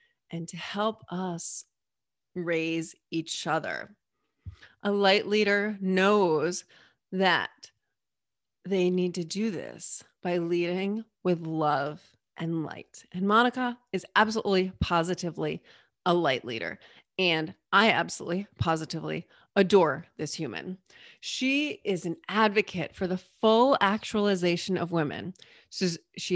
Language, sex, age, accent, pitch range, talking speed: English, female, 30-49, American, 170-210 Hz, 110 wpm